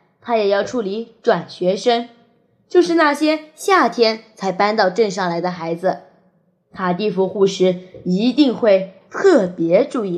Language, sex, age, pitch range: Chinese, female, 20-39, 180-240 Hz